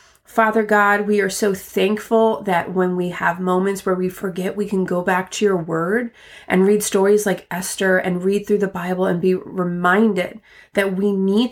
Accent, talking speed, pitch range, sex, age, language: American, 195 wpm, 180-215 Hz, female, 30-49, English